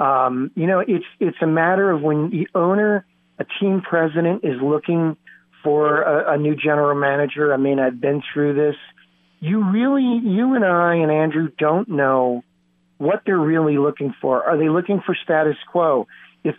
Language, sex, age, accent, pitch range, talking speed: English, male, 40-59, American, 145-180 Hz, 175 wpm